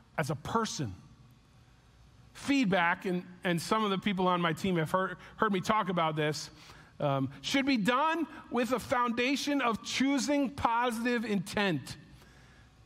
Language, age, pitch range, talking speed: English, 40-59, 175-240 Hz, 145 wpm